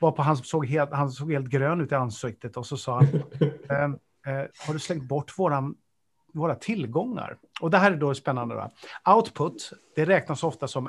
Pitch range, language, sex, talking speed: 135-180 Hz, Swedish, male, 205 wpm